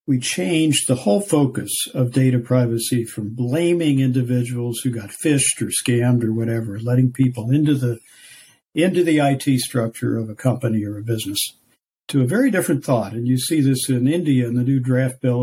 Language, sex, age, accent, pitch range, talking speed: English, male, 60-79, American, 120-150 Hz, 185 wpm